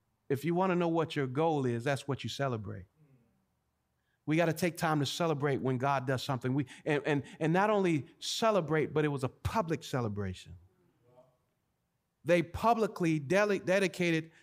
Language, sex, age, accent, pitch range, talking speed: English, male, 40-59, American, 145-195 Hz, 170 wpm